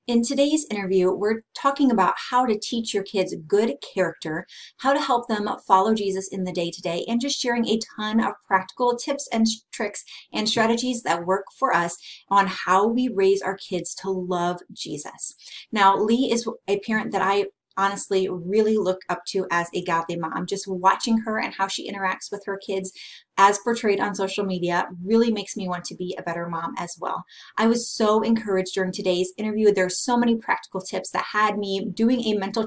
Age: 30-49